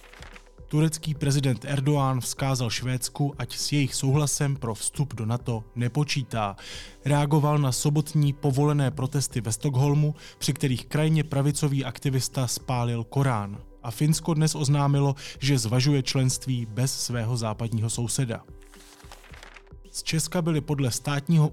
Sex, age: male, 20-39